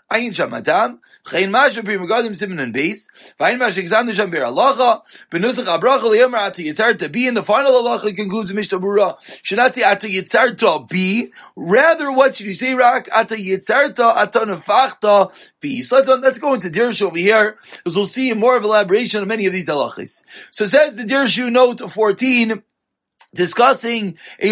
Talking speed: 170 wpm